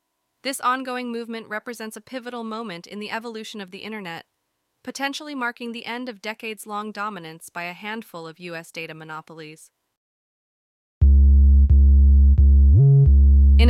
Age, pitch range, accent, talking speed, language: 30-49, 170-220 Hz, American, 125 wpm, English